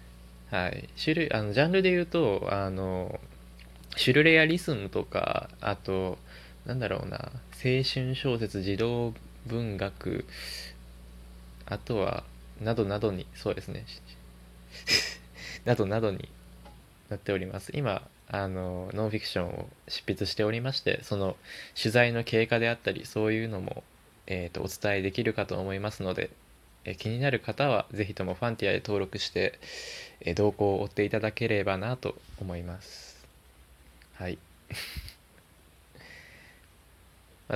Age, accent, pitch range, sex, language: 20-39, native, 80-115 Hz, male, Japanese